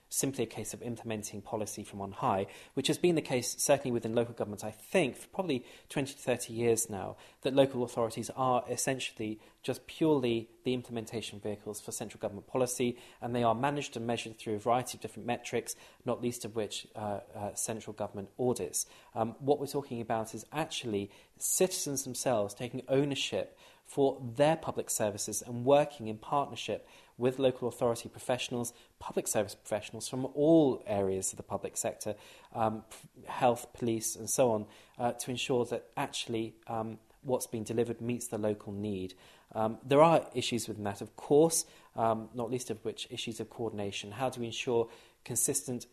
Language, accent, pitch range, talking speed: English, British, 110-130 Hz, 175 wpm